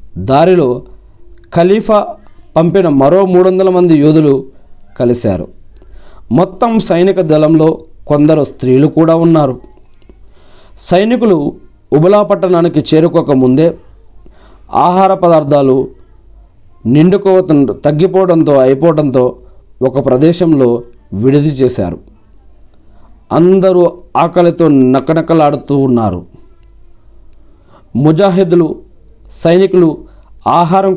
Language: Telugu